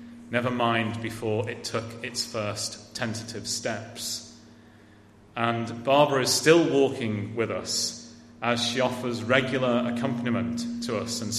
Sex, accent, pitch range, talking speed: male, British, 115-130 Hz, 125 wpm